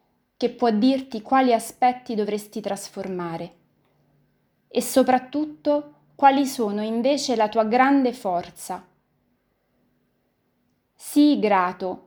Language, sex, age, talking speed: Italian, female, 20-39, 90 wpm